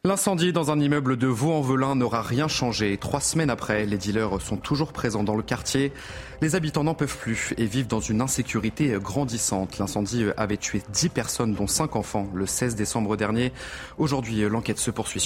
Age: 30-49